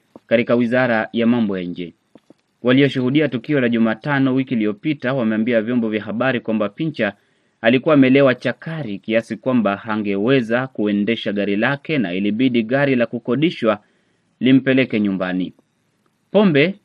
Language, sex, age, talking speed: Swahili, male, 30-49, 120 wpm